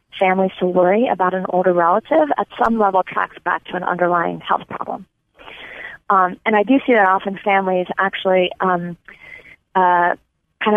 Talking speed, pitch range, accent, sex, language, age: 160 wpm, 180-205 Hz, American, female, English, 20-39